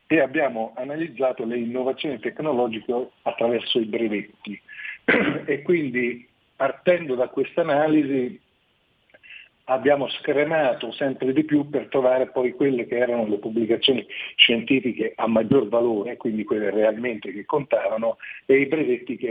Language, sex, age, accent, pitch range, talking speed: Italian, male, 50-69, native, 110-140 Hz, 125 wpm